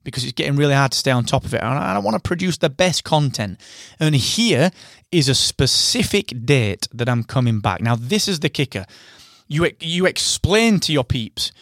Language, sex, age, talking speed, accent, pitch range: English, male, 30-49, 210 wpm, British, 120-175 Hz